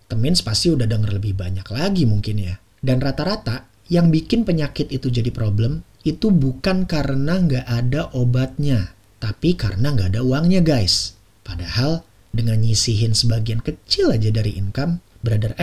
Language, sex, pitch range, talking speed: Indonesian, male, 110-140 Hz, 145 wpm